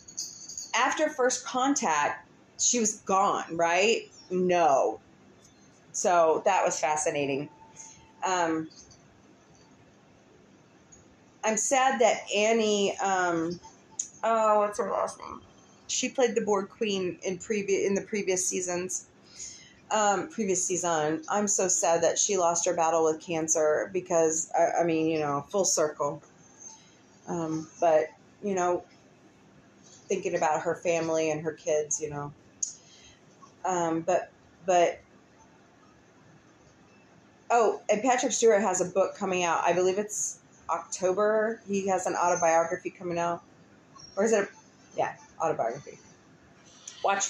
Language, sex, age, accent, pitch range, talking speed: English, female, 30-49, American, 165-210 Hz, 120 wpm